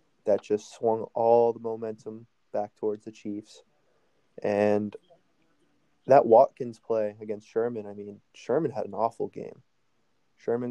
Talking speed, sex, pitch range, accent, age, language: 135 wpm, male, 105-120 Hz, American, 20-39, English